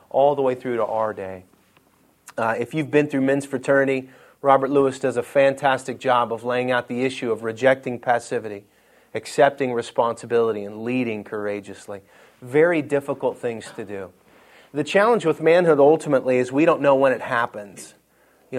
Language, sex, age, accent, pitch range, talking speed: English, male, 30-49, American, 120-140 Hz, 165 wpm